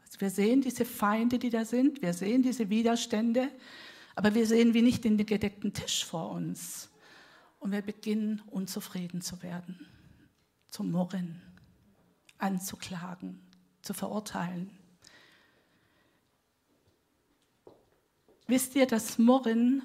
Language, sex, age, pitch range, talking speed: German, female, 50-69, 185-230 Hz, 110 wpm